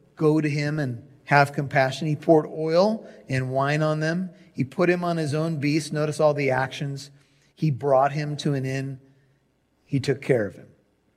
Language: English